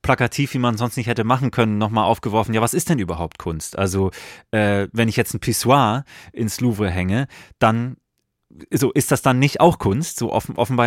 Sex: male